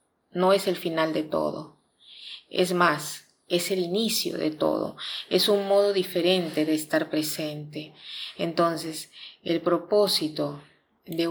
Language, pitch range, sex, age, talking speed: Spanish, 160-185 Hz, female, 40-59, 125 wpm